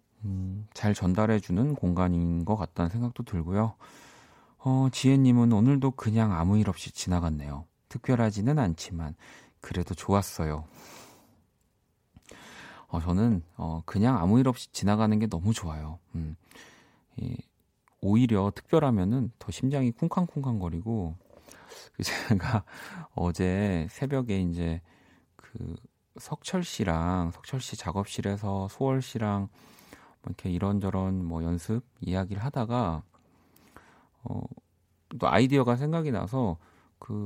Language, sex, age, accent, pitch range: Korean, male, 40-59, native, 90-125 Hz